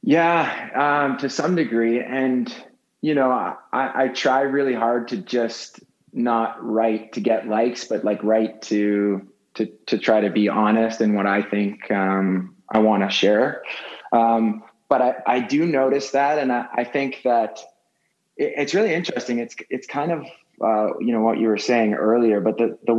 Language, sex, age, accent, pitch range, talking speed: English, male, 20-39, American, 105-125 Hz, 185 wpm